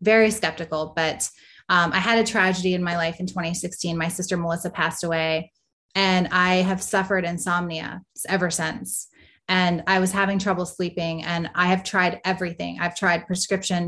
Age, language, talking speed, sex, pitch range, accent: 20-39, English, 170 wpm, female, 175-200 Hz, American